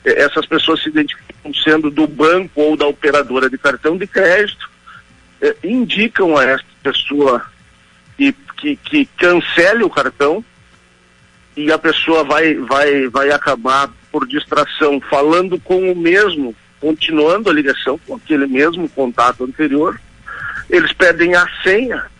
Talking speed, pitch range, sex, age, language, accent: 135 wpm, 145-220 Hz, male, 50-69, Portuguese, Brazilian